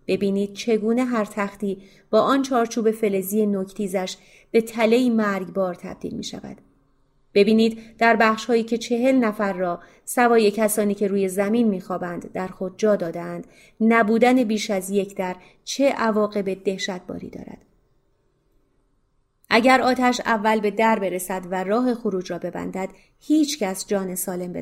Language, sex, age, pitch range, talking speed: Persian, female, 30-49, 190-230 Hz, 140 wpm